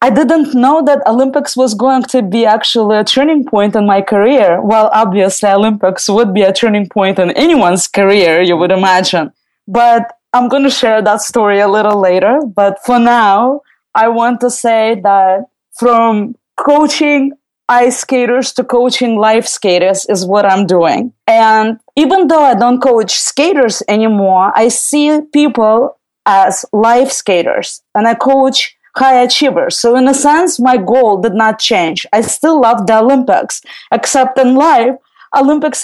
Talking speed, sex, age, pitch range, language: 160 wpm, female, 20-39, 205-260 Hz, English